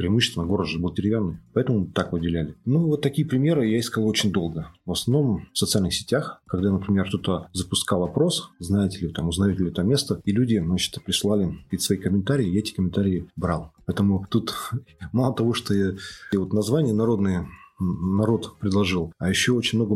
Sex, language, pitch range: male, Russian, 95-115 Hz